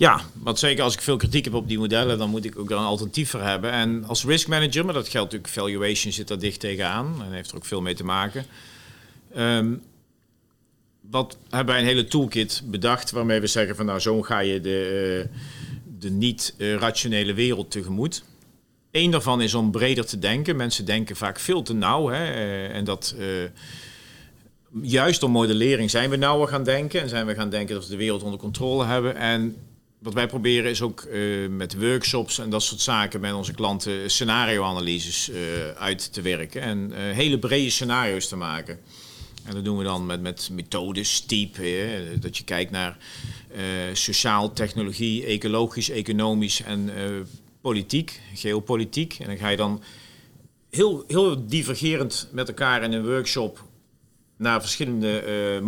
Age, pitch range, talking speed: 40-59, 100-125 Hz, 180 wpm